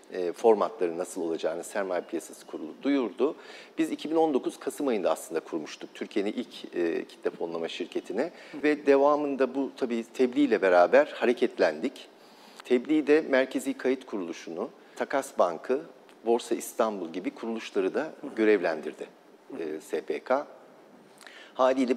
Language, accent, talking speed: Turkish, native, 110 wpm